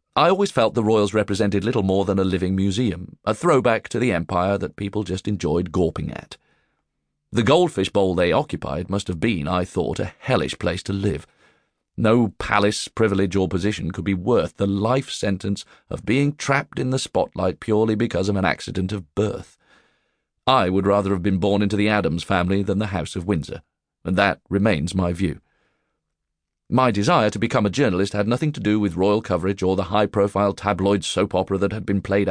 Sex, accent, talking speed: male, British, 195 wpm